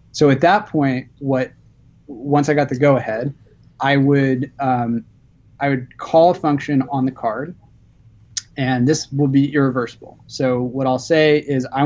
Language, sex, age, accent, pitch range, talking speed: English, male, 20-39, American, 120-140 Hz, 165 wpm